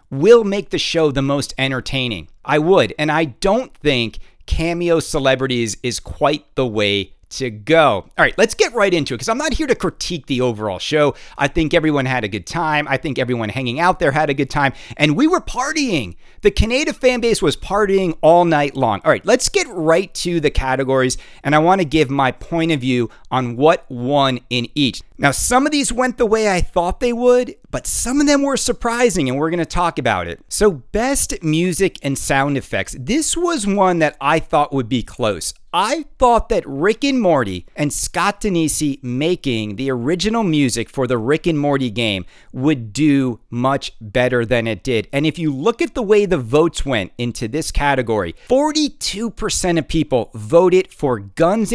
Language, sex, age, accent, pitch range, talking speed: English, male, 40-59, American, 125-190 Hz, 200 wpm